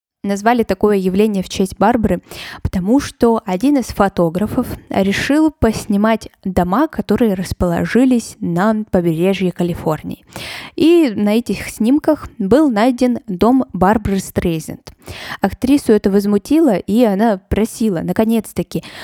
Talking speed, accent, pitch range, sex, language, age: 110 wpm, native, 185-235 Hz, female, Russian, 20-39